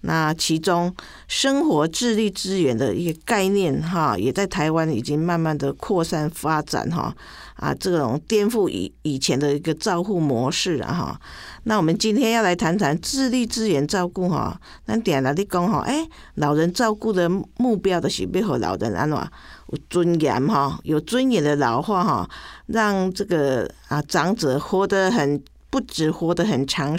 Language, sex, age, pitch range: Chinese, female, 50-69, 155-220 Hz